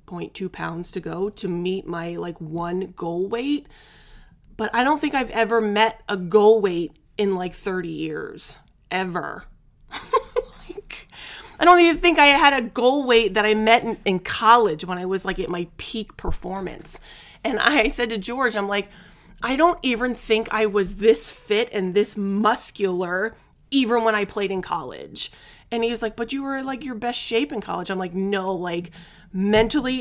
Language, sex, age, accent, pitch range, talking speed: English, female, 30-49, American, 185-235 Hz, 180 wpm